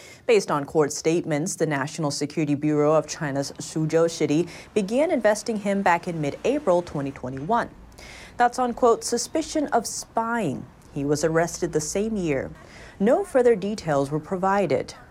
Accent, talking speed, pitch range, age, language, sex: American, 145 wpm, 155-230 Hz, 30-49, English, female